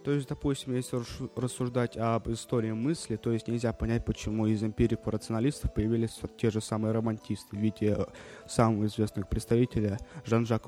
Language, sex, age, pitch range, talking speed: Russian, male, 20-39, 110-125 Hz, 150 wpm